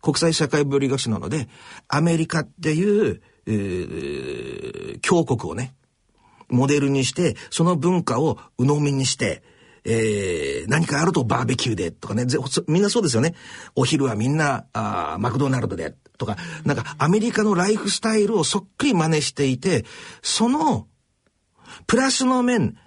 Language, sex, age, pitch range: Japanese, male, 50-69, 120-175 Hz